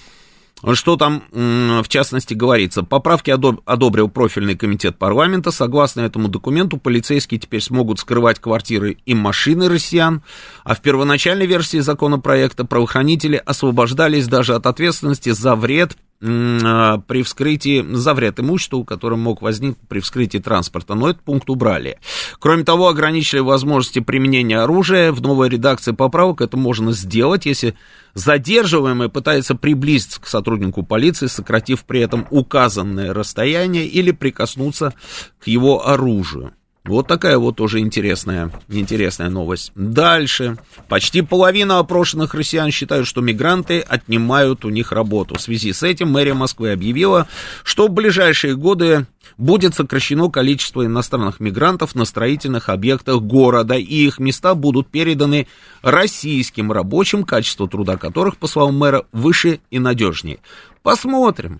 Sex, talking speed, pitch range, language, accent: male, 130 wpm, 115-155 Hz, Russian, native